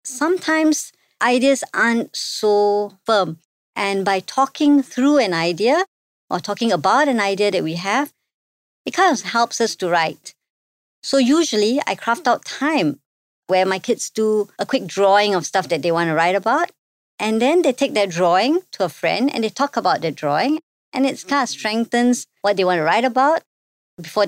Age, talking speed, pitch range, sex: 50-69, 185 wpm, 185-270 Hz, male